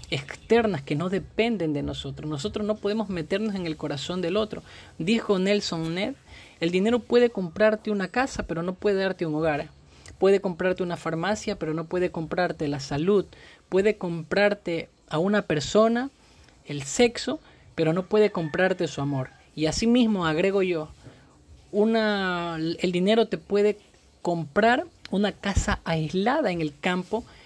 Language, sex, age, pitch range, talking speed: Spanish, male, 30-49, 155-200 Hz, 155 wpm